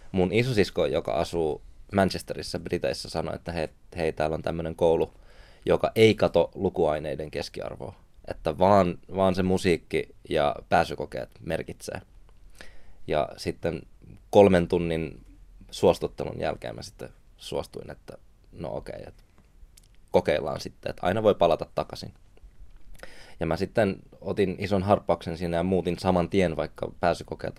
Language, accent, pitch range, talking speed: Finnish, native, 85-95 Hz, 130 wpm